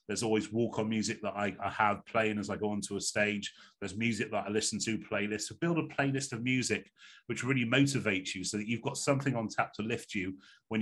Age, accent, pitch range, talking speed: 30-49, British, 105-135 Hz, 235 wpm